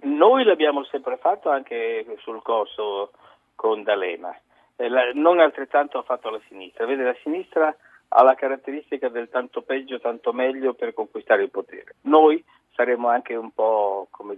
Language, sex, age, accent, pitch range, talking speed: Italian, male, 50-69, native, 120-165 Hz, 150 wpm